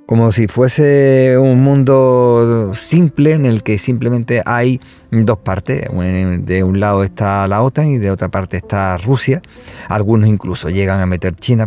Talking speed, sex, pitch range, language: 160 wpm, male, 100-120 Hz, Spanish